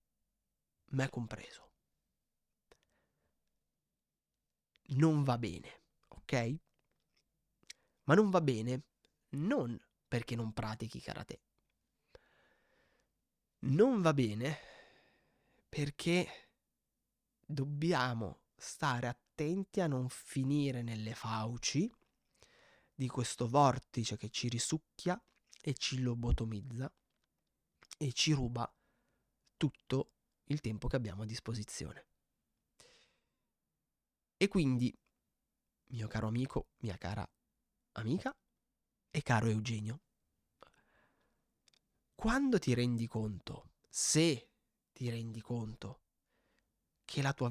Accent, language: native, Italian